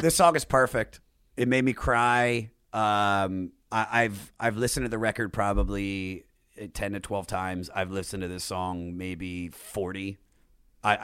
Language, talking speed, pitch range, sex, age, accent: English, 160 wpm, 100-125 Hz, male, 30-49, American